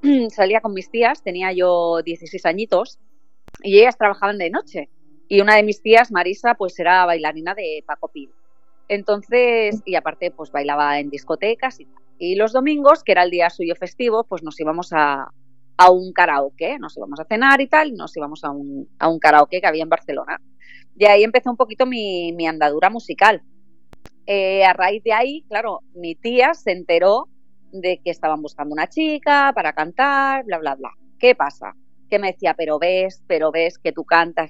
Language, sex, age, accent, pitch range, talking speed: Spanish, female, 30-49, Spanish, 155-225 Hz, 190 wpm